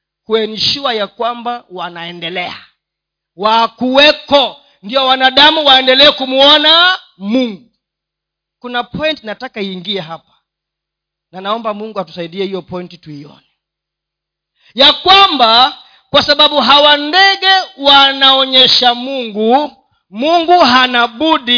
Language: Swahili